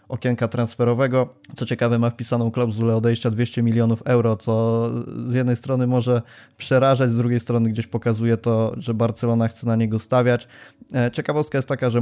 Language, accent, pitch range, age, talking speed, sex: Polish, native, 115-125 Hz, 20-39, 165 wpm, male